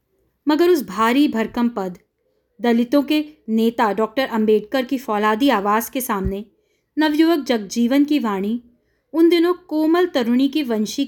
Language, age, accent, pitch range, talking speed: Hindi, 20-39, native, 205-270 Hz, 135 wpm